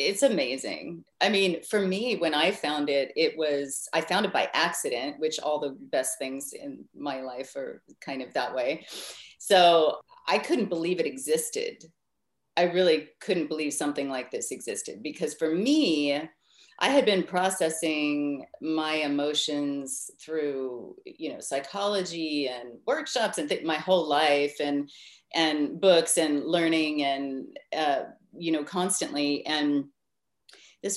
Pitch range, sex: 145-170 Hz, female